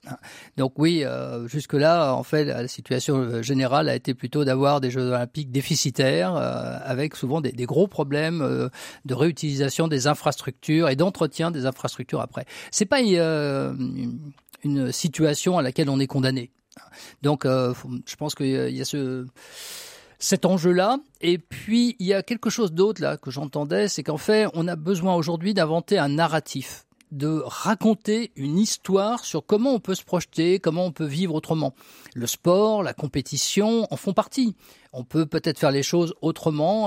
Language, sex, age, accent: French, male, 50-69, French